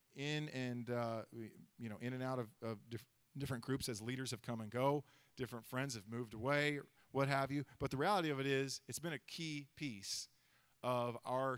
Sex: male